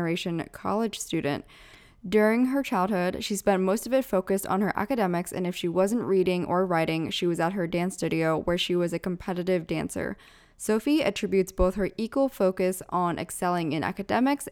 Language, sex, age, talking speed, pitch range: English, female, 10-29, 180 wpm, 180-215 Hz